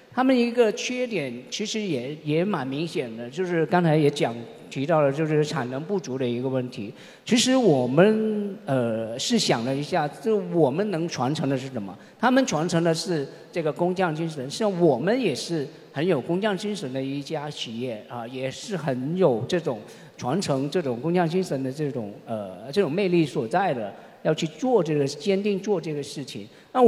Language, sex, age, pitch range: Chinese, male, 50-69, 135-190 Hz